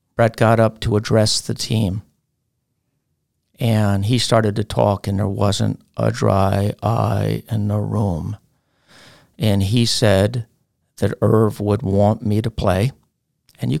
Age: 50-69